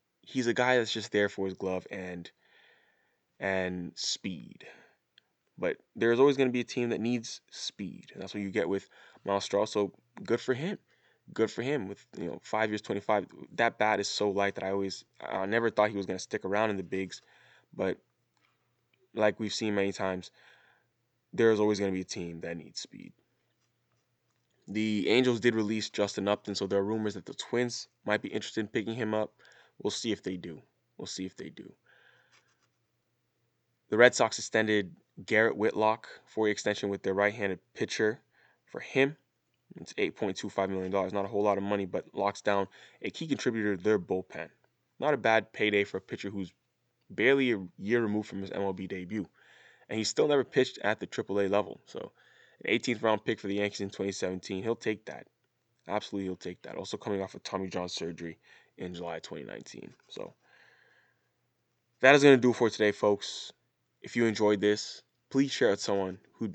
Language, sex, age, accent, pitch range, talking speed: English, male, 20-39, American, 95-115 Hz, 190 wpm